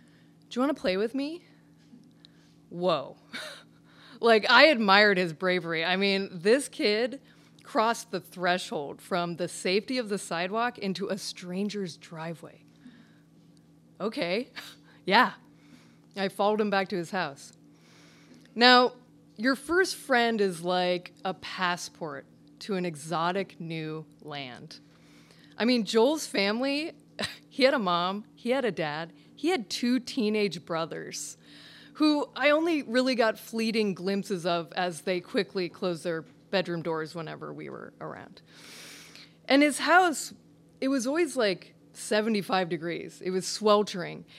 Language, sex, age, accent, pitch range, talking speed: English, female, 30-49, American, 170-235 Hz, 135 wpm